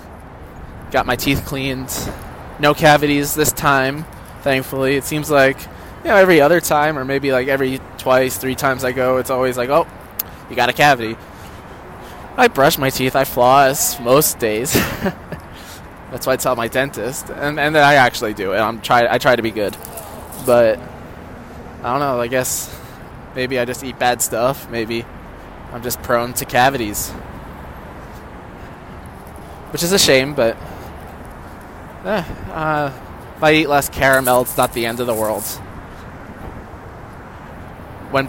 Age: 20-39